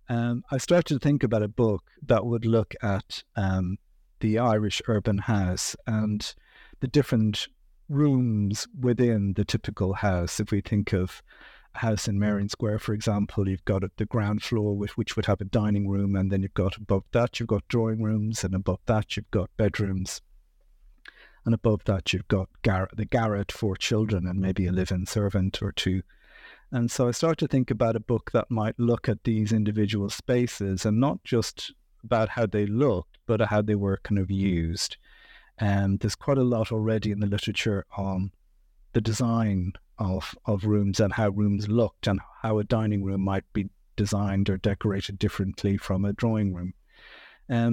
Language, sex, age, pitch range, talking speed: English, male, 50-69, 100-115 Hz, 180 wpm